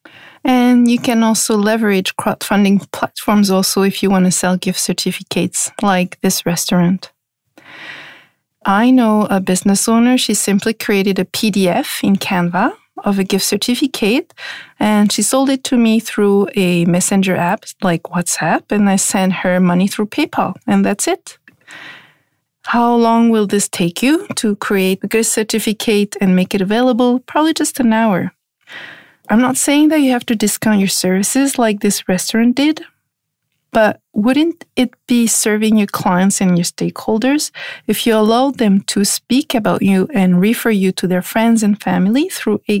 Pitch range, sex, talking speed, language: 190-235 Hz, female, 165 wpm, English